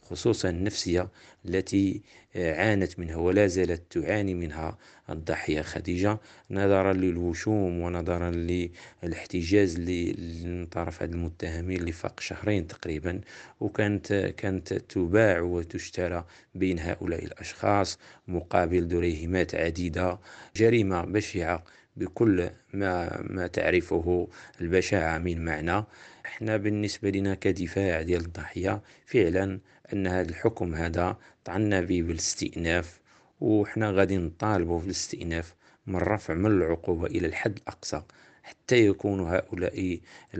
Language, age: Arabic, 50-69